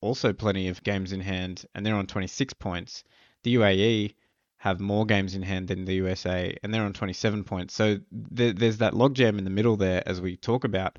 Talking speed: 215 wpm